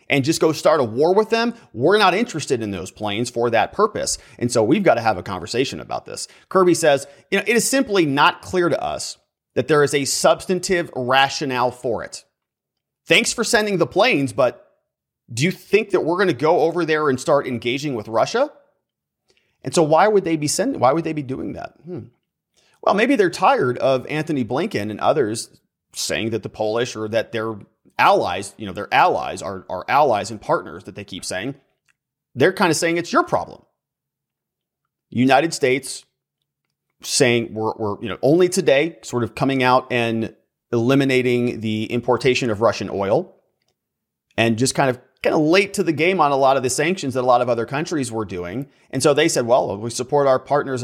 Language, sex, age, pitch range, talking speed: English, male, 30-49, 120-165 Hz, 200 wpm